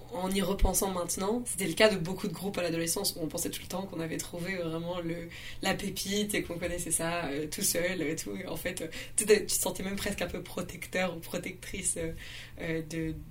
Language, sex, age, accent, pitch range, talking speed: French, female, 20-39, French, 165-200 Hz, 235 wpm